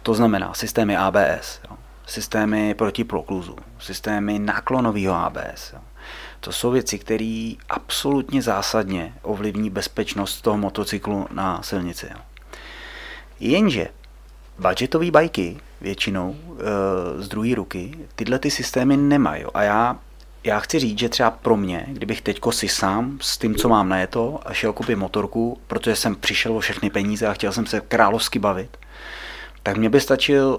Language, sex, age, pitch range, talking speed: Czech, male, 30-49, 95-115 Hz, 140 wpm